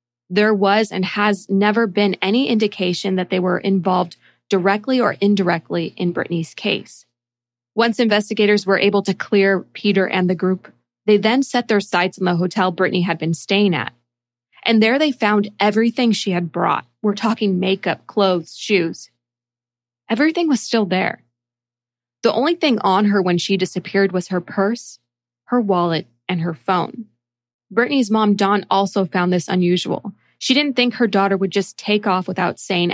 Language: English